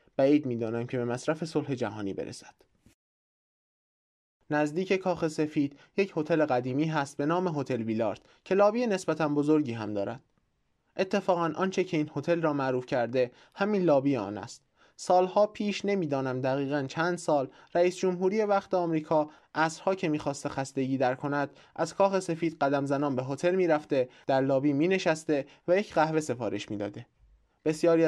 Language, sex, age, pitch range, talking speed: Persian, male, 20-39, 130-165 Hz, 150 wpm